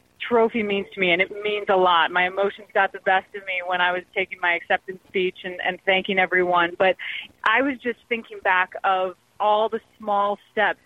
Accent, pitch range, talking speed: American, 195-235 Hz, 210 wpm